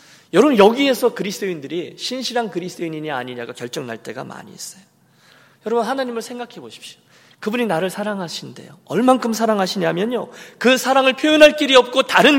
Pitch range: 170-250 Hz